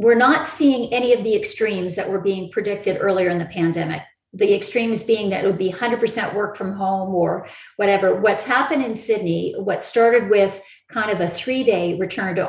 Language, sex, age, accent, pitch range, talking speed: English, female, 40-59, American, 190-220 Hz, 195 wpm